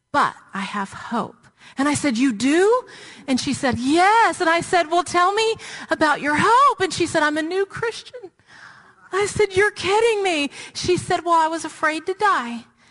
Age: 40-59